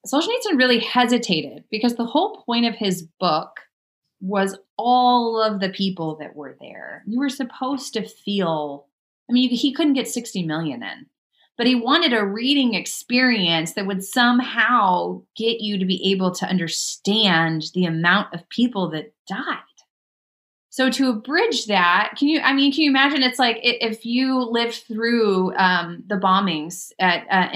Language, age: English, 30-49